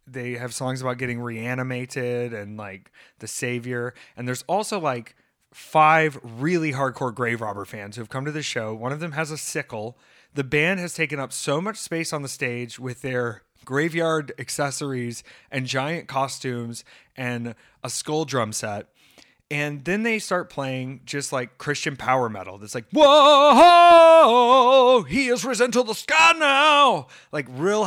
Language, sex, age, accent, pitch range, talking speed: English, male, 30-49, American, 120-180 Hz, 165 wpm